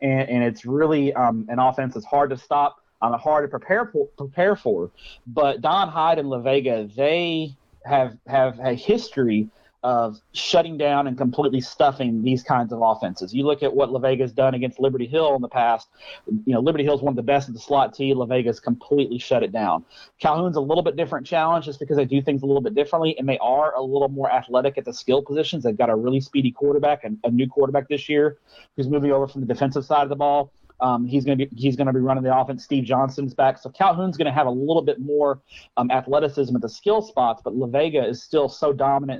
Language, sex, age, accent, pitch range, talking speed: English, male, 30-49, American, 130-145 Hz, 235 wpm